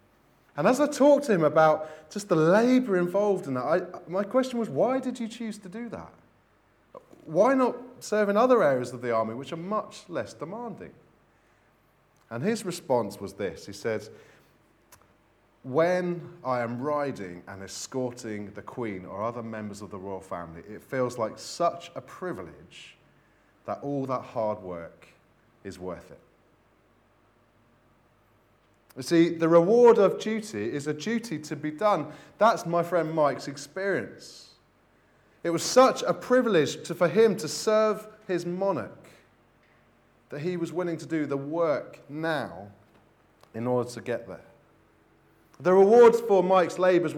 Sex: male